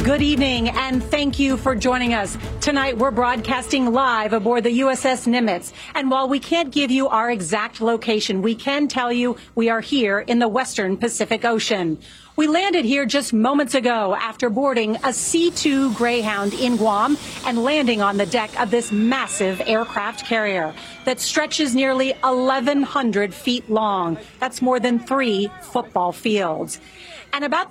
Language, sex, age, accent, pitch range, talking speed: English, female, 40-59, American, 220-270 Hz, 160 wpm